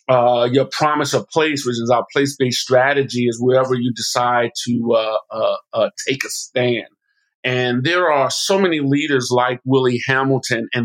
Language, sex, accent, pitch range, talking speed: English, male, American, 120-135 Hz, 175 wpm